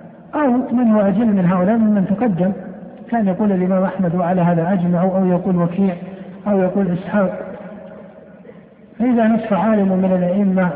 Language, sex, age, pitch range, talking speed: Arabic, male, 60-79, 180-215 Hz, 145 wpm